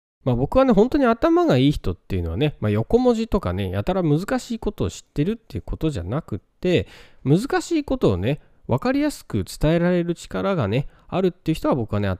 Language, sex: Japanese, male